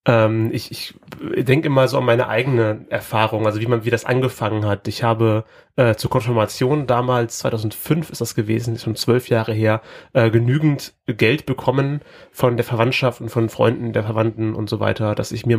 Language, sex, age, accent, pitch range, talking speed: German, male, 30-49, German, 110-125 Hz, 190 wpm